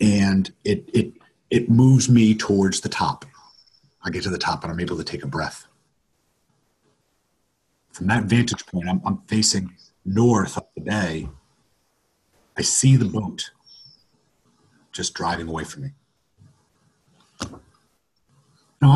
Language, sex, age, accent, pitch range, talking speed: English, male, 50-69, American, 95-120 Hz, 135 wpm